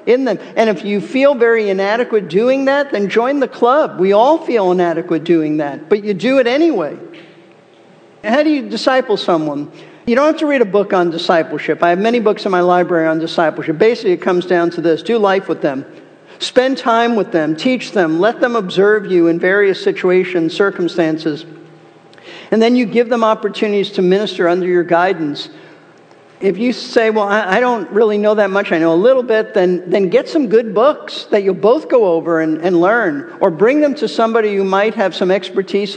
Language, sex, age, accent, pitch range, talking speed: English, male, 50-69, American, 175-240 Hz, 205 wpm